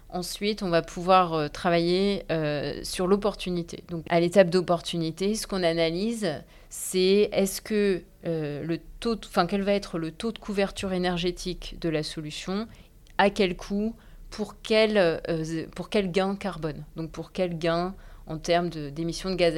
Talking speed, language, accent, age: 160 wpm, French, French, 30-49